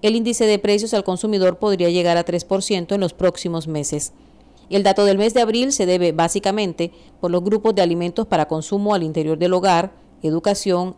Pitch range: 165-205 Hz